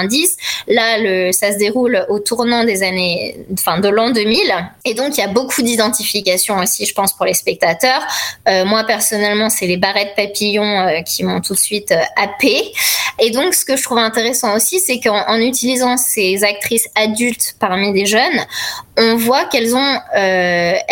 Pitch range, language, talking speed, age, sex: 205-265 Hz, French, 180 wpm, 20-39, female